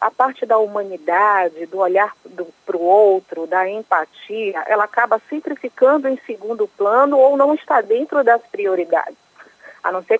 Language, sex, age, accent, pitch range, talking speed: Portuguese, female, 40-59, Brazilian, 210-295 Hz, 160 wpm